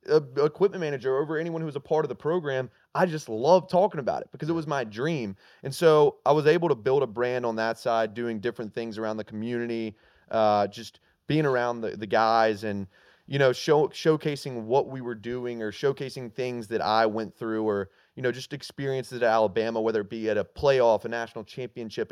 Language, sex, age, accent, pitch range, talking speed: English, male, 30-49, American, 110-140 Hz, 210 wpm